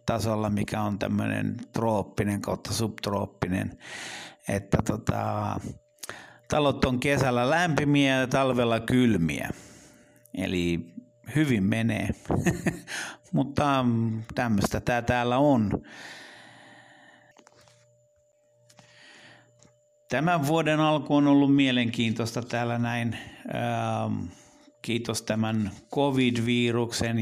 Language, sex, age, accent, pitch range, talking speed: Finnish, male, 60-79, native, 115-125 Hz, 75 wpm